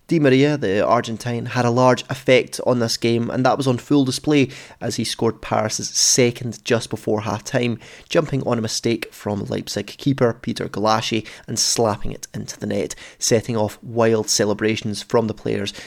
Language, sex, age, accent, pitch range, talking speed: English, male, 20-39, British, 115-135 Hz, 180 wpm